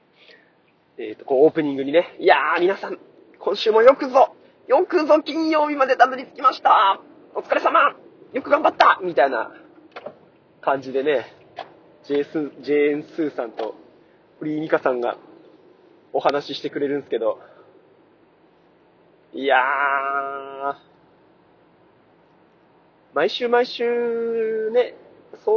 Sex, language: male, Japanese